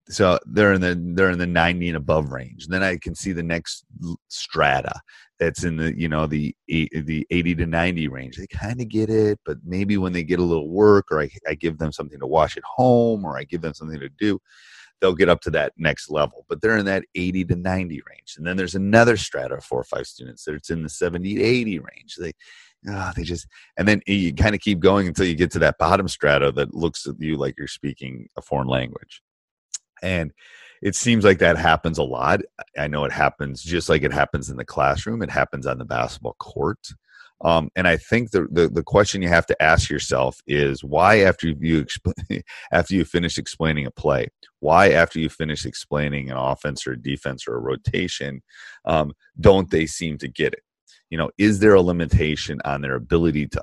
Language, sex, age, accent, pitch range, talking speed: English, male, 30-49, American, 75-95 Hz, 220 wpm